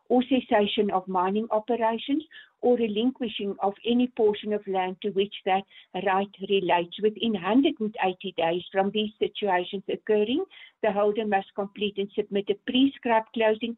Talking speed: 145 wpm